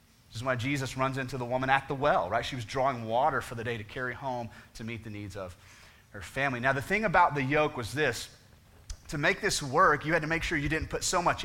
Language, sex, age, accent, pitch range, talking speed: English, male, 30-49, American, 120-175 Hz, 265 wpm